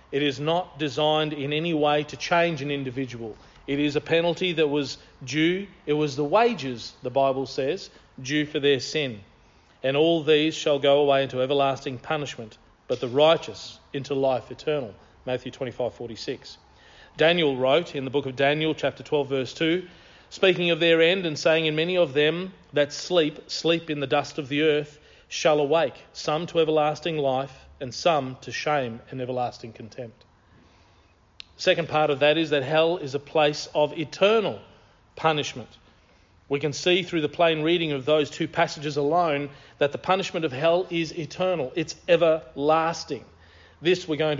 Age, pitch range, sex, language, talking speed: 40-59, 135-165 Hz, male, English, 170 wpm